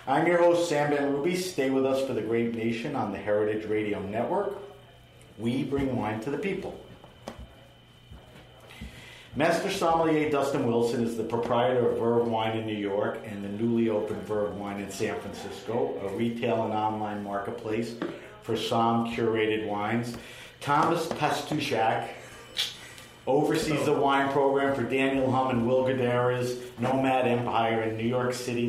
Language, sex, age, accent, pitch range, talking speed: English, male, 50-69, American, 115-135 Hz, 150 wpm